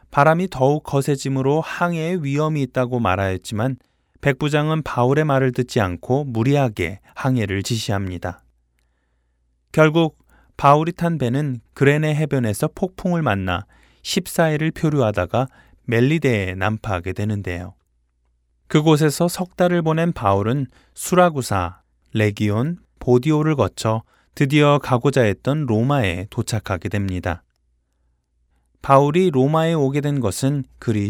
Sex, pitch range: male, 95-150 Hz